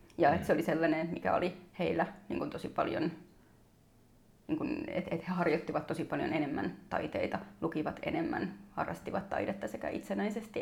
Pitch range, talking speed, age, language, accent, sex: 155-190 Hz, 145 wpm, 30-49, Finnish, native, female